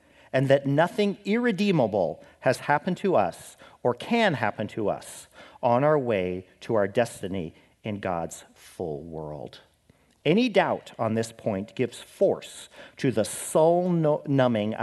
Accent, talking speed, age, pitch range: American, 135 wpm, 50-69, 110-160 Hz